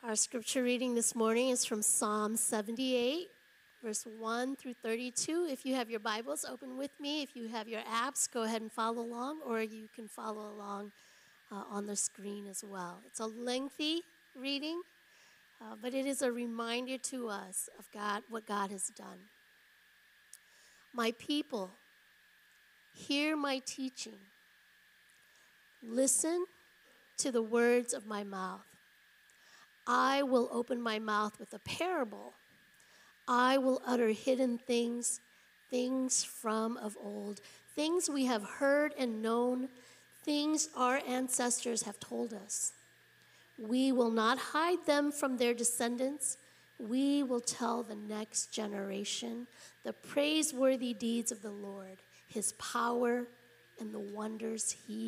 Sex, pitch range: female, 220-295 Hz